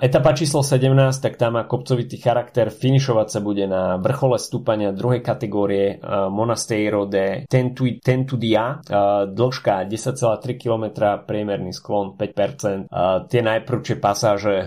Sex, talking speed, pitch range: male, 145 wpm, 95-115 Hz